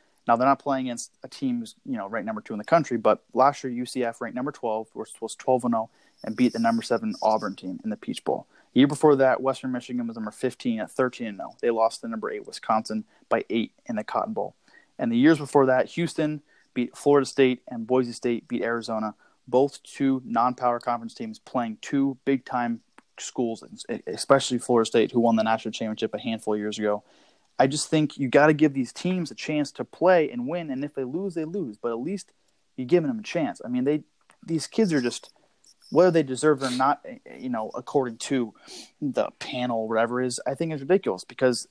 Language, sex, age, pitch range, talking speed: English, male, 20-39, 120-165 Hz, 215 wpm